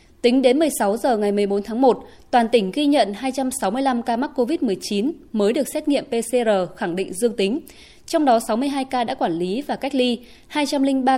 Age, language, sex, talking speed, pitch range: 20-39, Vietnamese, female, 195 wpm, 210-265 Hz